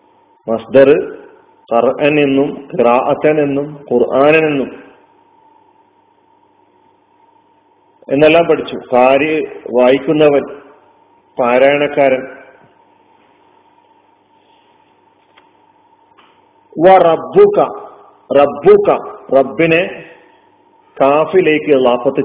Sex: male